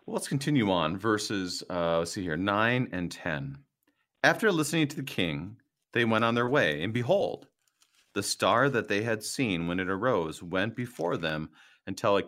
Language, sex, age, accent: English, male, 40-59, American